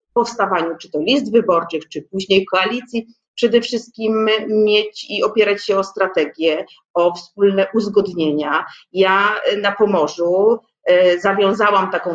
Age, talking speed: 30-49, 125 wpm